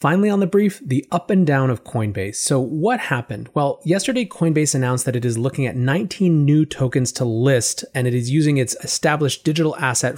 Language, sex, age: English, male, 30-49